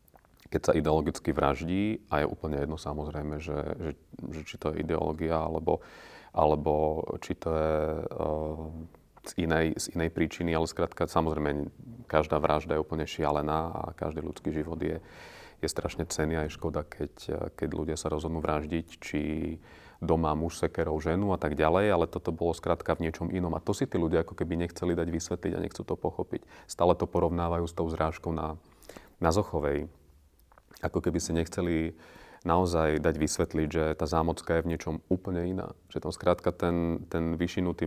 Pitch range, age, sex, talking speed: 80-90 Hz, 30-49, male, 175 wpm